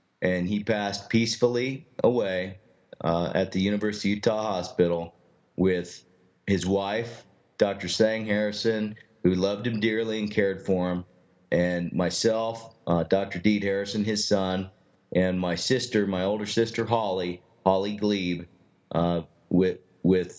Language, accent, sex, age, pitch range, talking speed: English, American, male, 40-59, 90-110 Hz, 130 wpm